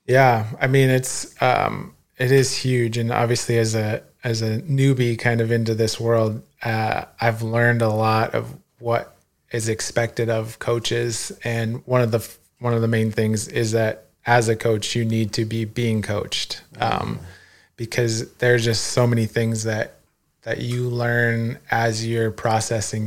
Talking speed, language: 170 wpm, English